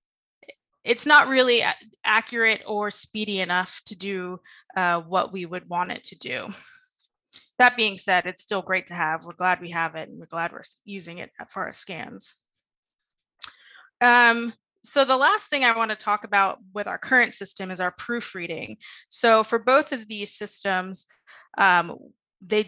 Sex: female